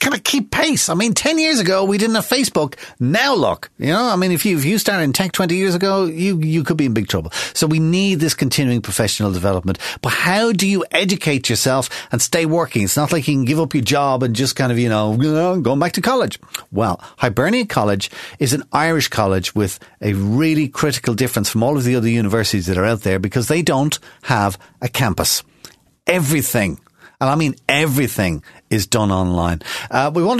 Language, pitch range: English, 110-170 Hz